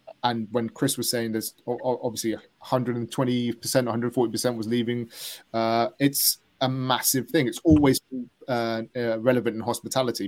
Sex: male